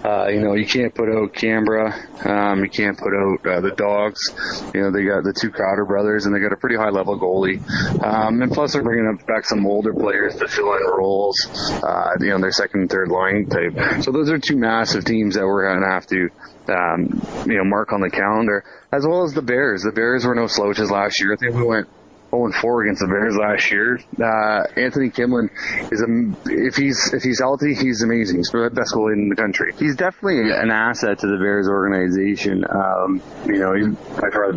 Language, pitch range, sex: English, 95-110 Hz, male